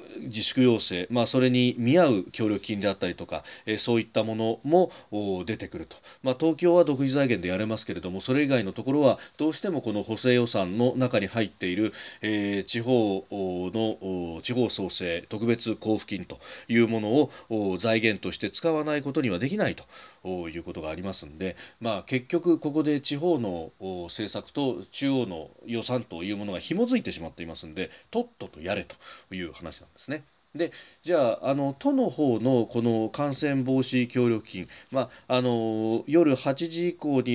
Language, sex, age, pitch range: Japanese, male, 40-59, 95-140 Hz